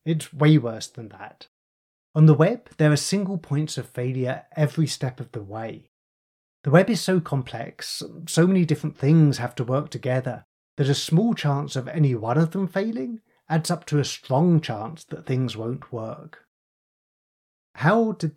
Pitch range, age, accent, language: 125-160 Hz, 30-49, British, English